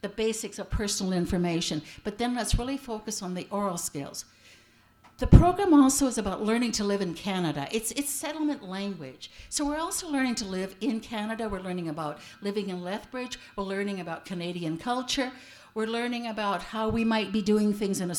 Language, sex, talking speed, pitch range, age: English, female, 190 wpm, 185-240 Hz, 60-79